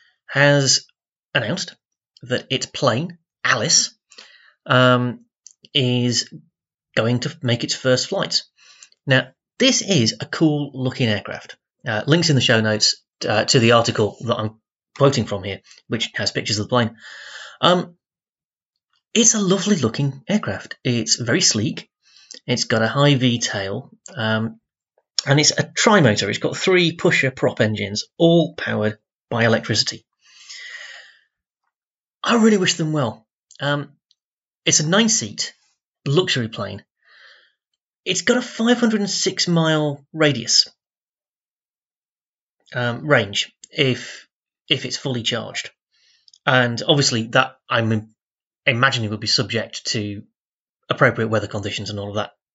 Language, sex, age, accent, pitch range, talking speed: English, male, 30-49, British, 115-160 Hz, 125 wpm